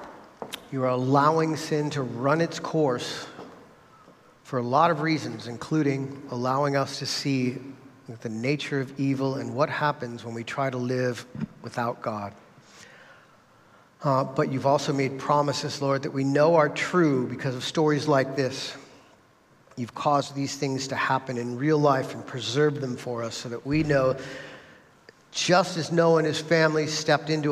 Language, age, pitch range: English, 50-69, 125-145 Hz